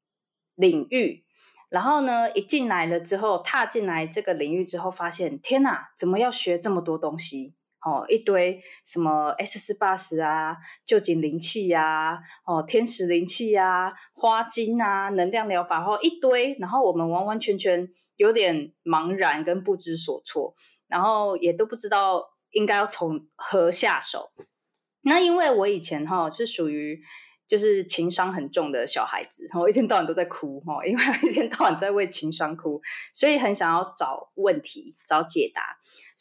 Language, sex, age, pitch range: Chinese, female, 20-39, 165-265 Hz